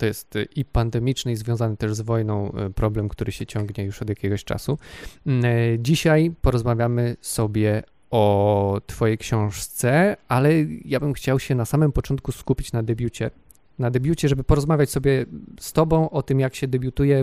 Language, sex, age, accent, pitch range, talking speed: Polish, male, 20-39, native, 110-130 Hz, 160 wpm